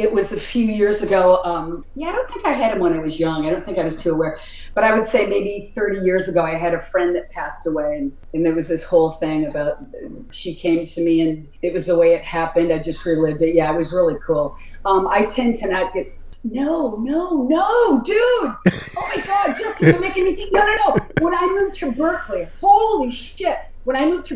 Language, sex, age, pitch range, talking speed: English, female, 40-59, 175-255 Hz, 245 wpm